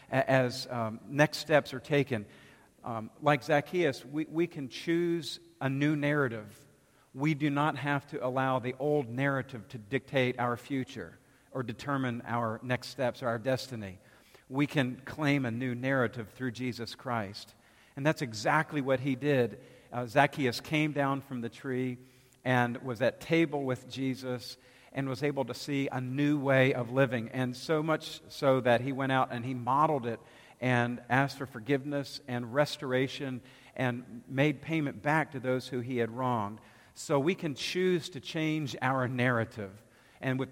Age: 50-69